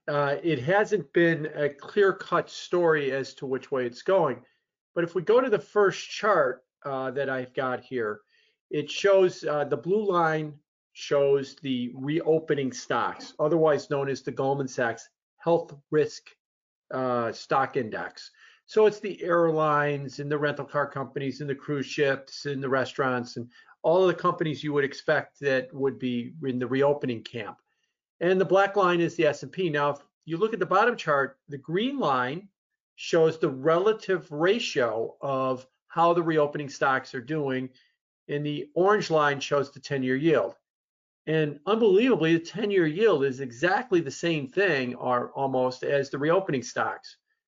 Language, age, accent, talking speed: English, 50-69, American, 170 wpm